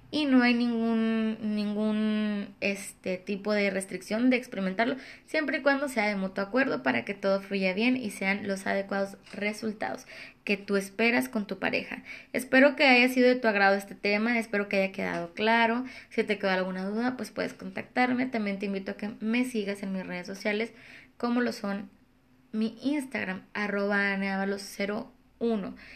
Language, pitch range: Spanish, 195-235 Hz